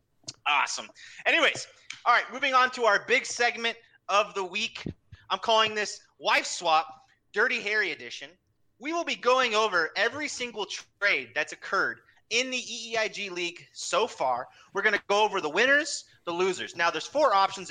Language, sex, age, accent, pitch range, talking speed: English, male, 30-49, American, 145-230 Hz, 170 wpm